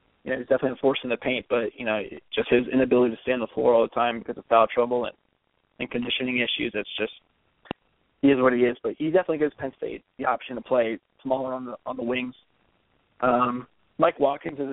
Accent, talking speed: American, 230 wpm